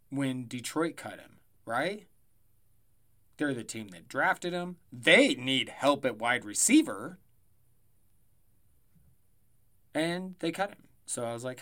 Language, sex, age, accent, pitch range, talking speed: English, male, 30-49, American, 110-165 Hz, 130 wpm